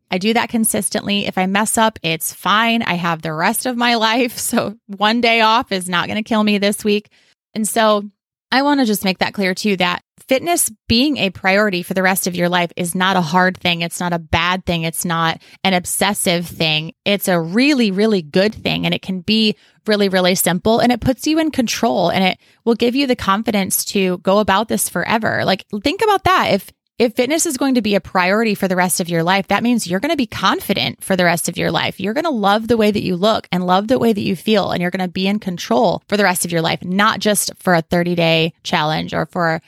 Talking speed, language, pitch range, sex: 250 wpm, English, 180-225 Hz, female